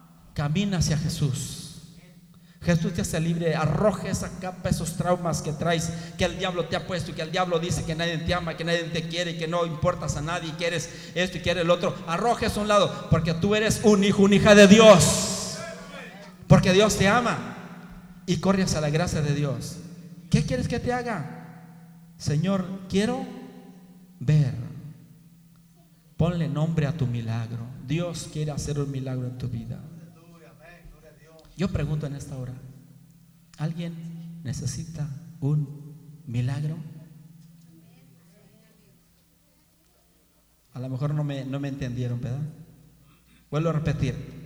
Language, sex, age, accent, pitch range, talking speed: Spanish, male, 40-59, Mexican, 150-175 Hz, 155 wpm